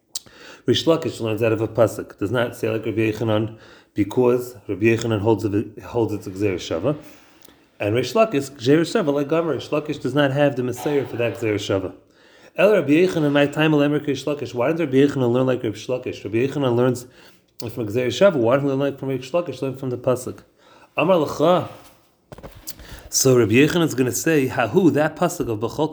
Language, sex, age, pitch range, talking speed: English, male, 30-49, 125-160 Hz, 185 wpm